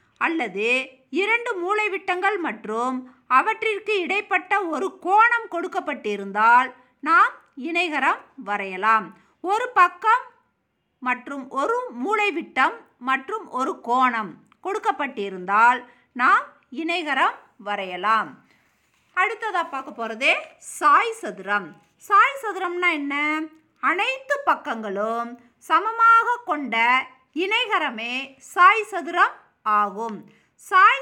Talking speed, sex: 75 wpm, female